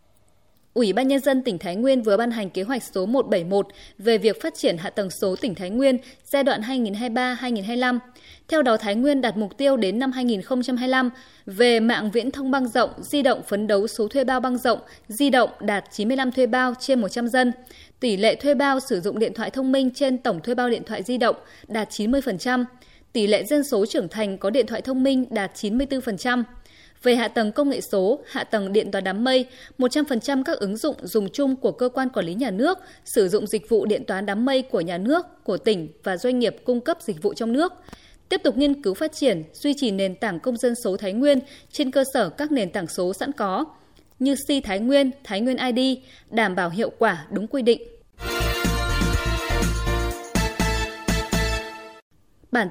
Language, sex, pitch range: Vietnamese, female, 205-265 Hz